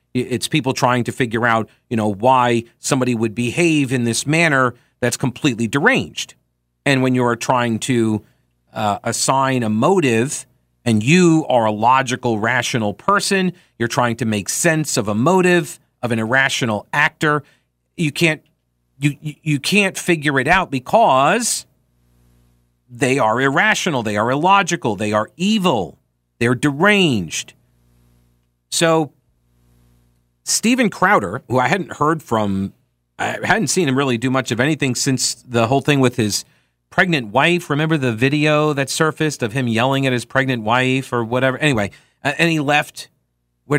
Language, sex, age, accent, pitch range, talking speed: English, male, 40-59, American, 115-150 Hz, 155 wpm